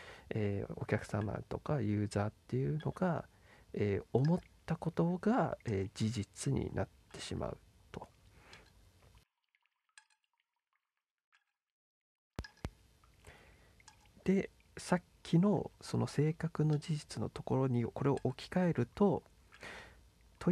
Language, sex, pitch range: Japanese, male, 105-165 Hz